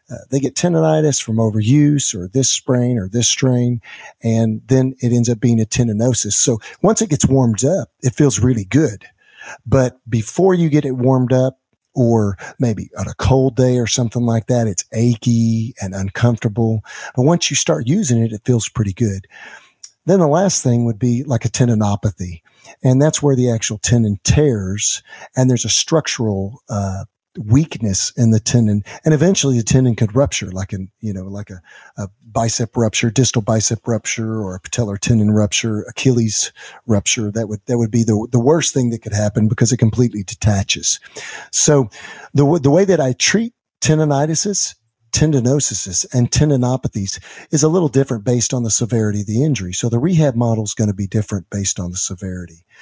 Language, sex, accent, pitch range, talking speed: English, male, American, 110-135 Hz, 185 wpm